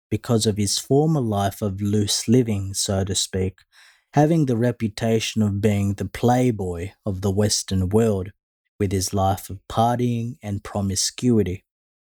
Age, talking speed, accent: 30-49, 145 wpm, Australian